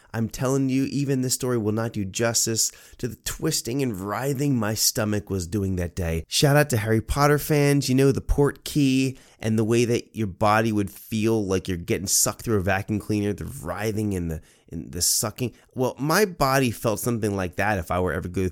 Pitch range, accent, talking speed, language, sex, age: 95-125 Hz, American, 215 wpm, English, male, 30-49